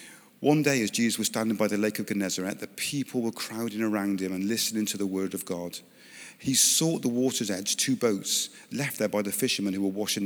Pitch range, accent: 105-130 Hz, British